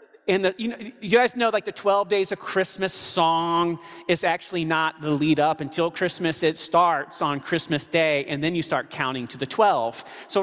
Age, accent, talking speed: 40-59, American, 205 wpm